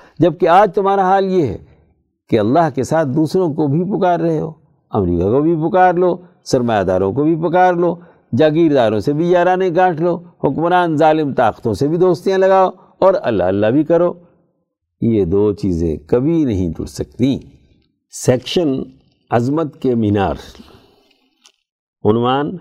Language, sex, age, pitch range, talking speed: Urdu, male, 60-79, 100-155 Hz, 150 wpm